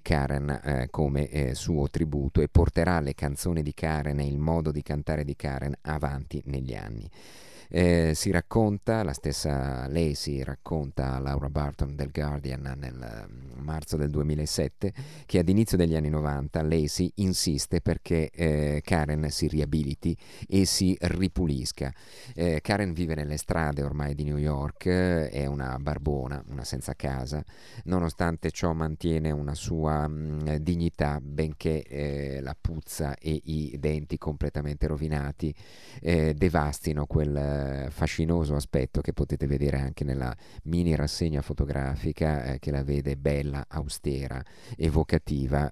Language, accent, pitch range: Italian, native, 70-80 Hz